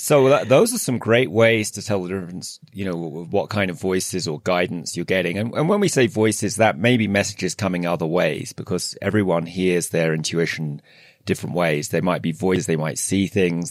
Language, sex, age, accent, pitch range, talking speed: English, male, 30-49, British, 90-115 Hz, 220 wpm